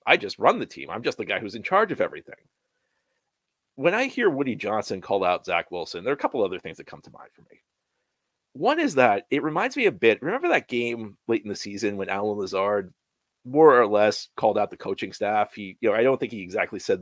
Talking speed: 245 wpm